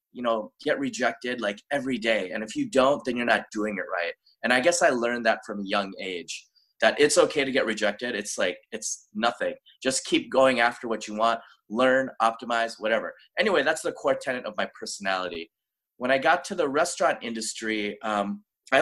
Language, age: English, 30-49